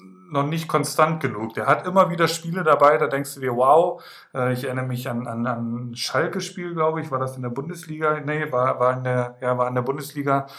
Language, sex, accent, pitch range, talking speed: German, male, German, 125-150 Hz, 225 wpm